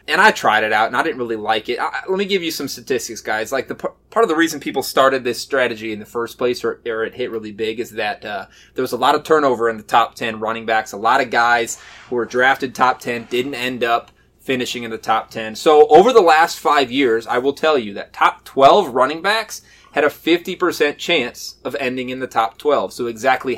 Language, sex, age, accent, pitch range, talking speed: English, male, 20-39, American, 120-170 Hz, 250 wpm